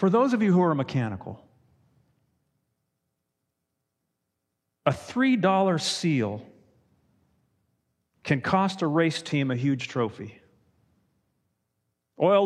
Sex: male